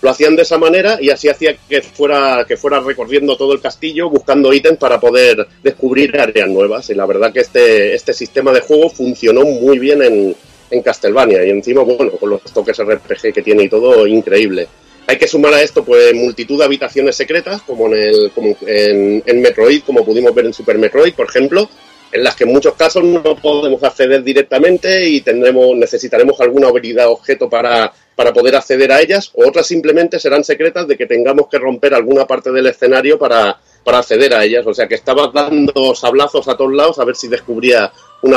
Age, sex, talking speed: 40-59, male, 205 wpm